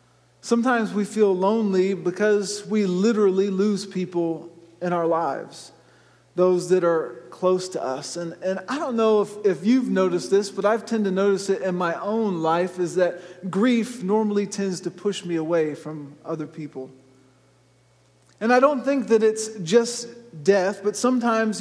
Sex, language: male, English